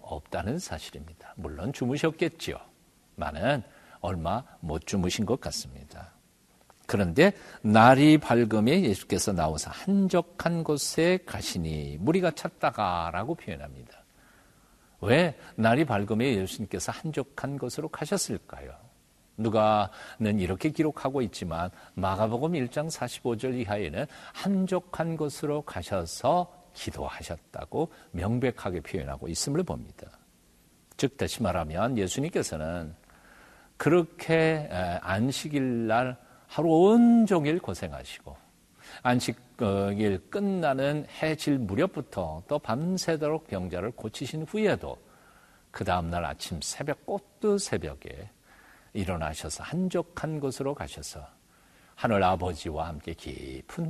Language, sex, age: Korean, male, 60-79